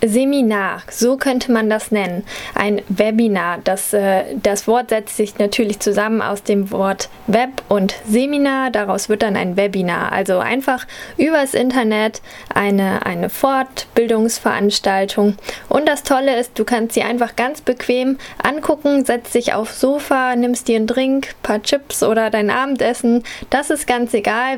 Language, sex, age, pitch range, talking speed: German, female, 10-29, 210-260 Hz, 155 wpm